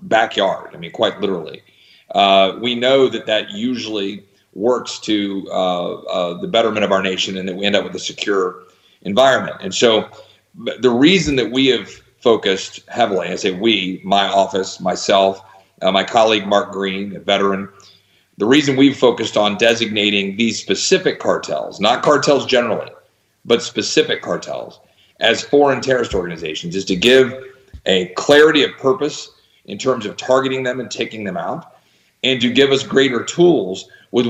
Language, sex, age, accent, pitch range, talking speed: English, male, 40-59, American, 100-130 Hz, 165 wpm